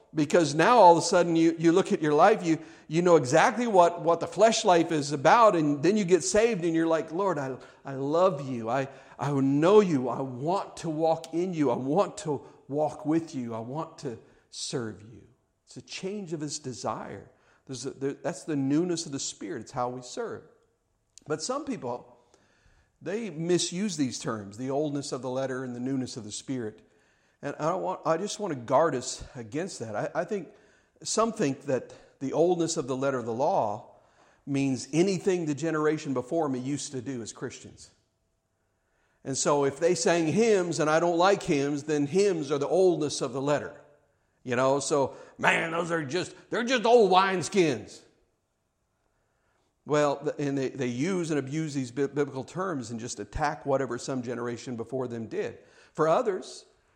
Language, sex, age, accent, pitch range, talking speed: English, male, 50-69, American, 130-175 Hz, 190 wpm